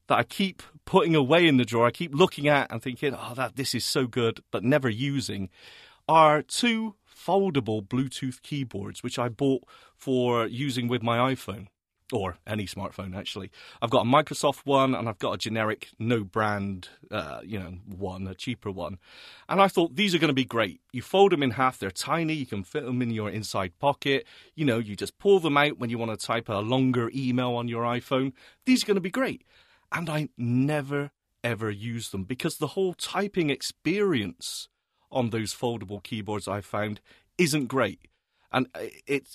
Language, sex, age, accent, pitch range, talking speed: English, male, 40-59, British, 115-160 Hz, 195 wpm